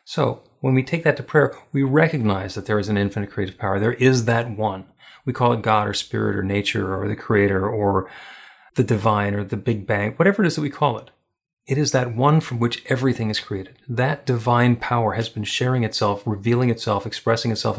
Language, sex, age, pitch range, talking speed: English, male, 40-59, 105-130 Hz, 220 wpm